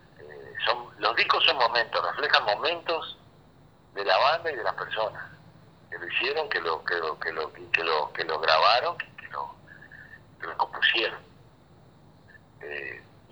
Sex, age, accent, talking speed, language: male, 50-69, Argentinian, 160 wpm, Spanish